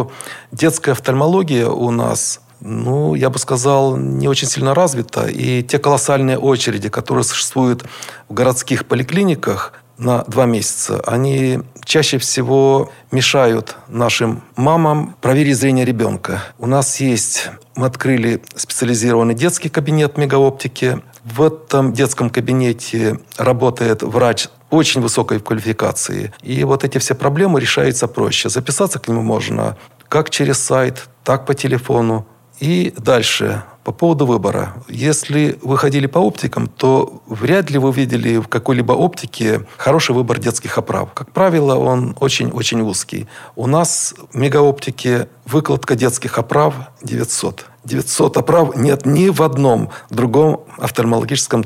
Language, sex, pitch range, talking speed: Russian, male, 120-140 Hz, 130 wpm